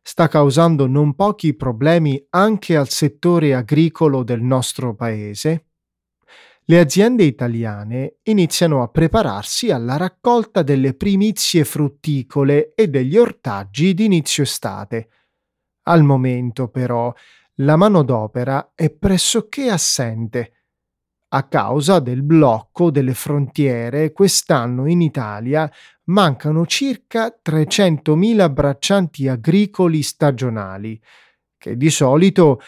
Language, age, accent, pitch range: Italian, 30-49, native, 130-170 Hz